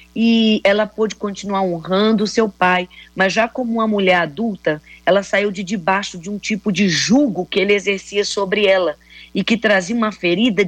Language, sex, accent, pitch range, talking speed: Portuguese, female, Brazilian, 175-220 Hz, 185 wpm